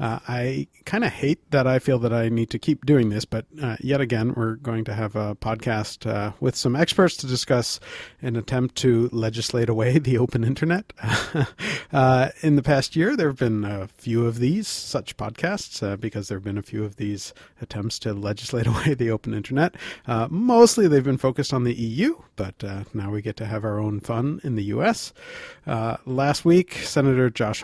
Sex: male